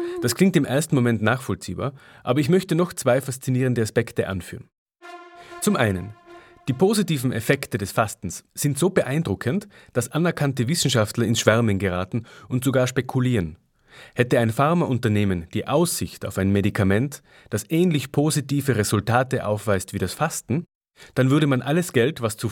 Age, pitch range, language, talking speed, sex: 30-49, 110-150 Hz, German, 150 wpm, male